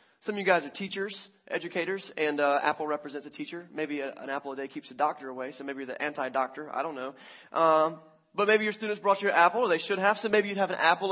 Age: 20-39